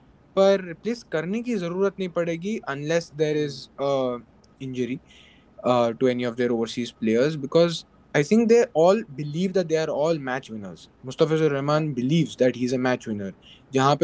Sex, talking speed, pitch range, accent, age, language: male, 160 wpm, 130-165 Hz, Indian, 20-39, English